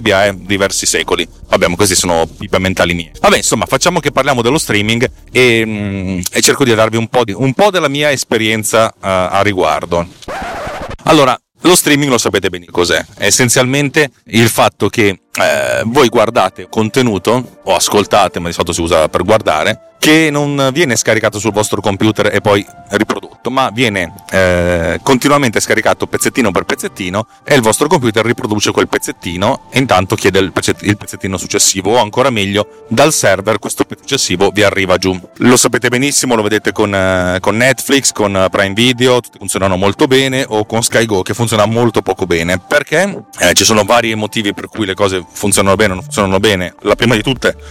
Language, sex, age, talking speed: Italian, male, 30-49, 180 wpm